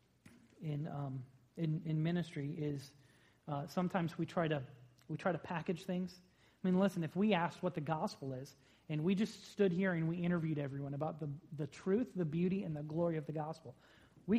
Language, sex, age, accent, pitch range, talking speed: English, male, 30-49, American, 155-200 Hz, 200 wpm